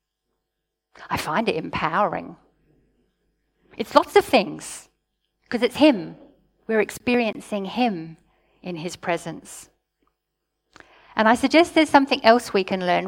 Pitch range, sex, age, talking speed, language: 200-270 Hz, female, 50-69, 120 wpm, English